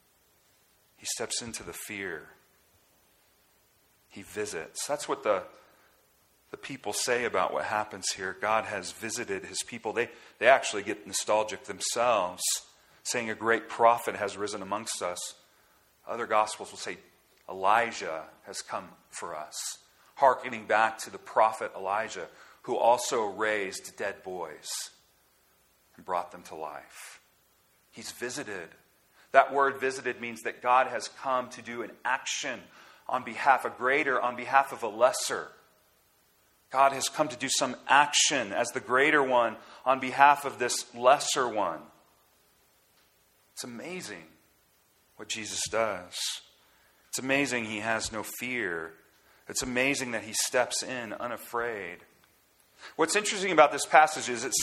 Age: 40-59